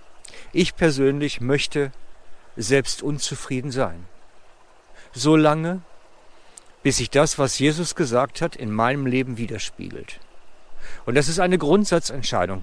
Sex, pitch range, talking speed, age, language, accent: male, 125-165 Hz, 110 wpm, 50-69, German, German